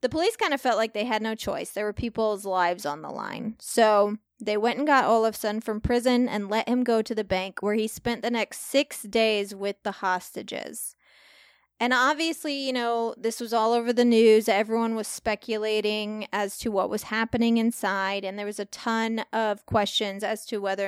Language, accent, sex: English, American, female